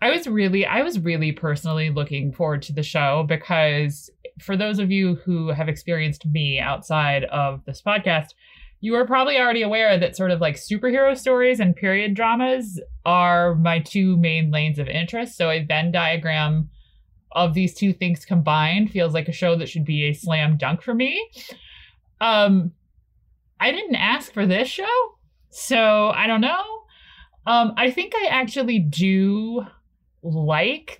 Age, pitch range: 30-49, 160-235 Hz